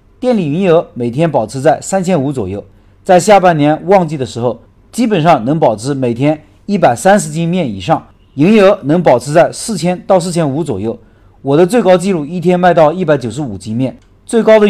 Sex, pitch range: male, 125-185 Hz